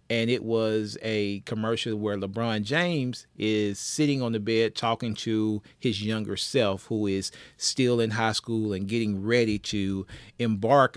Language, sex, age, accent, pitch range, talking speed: English, male, 40-59, American, 105-130 Hz, 160 wpm